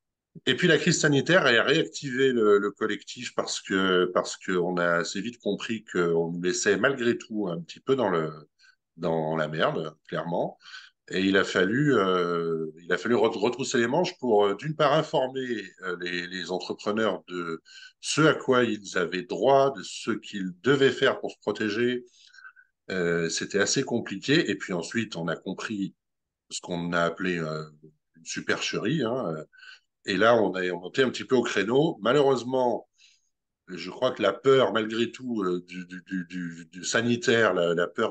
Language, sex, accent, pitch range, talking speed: French, male, French, 90-130 Hz, 170 wpm